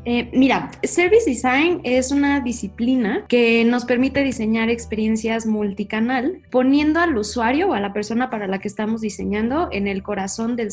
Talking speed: 160 wpm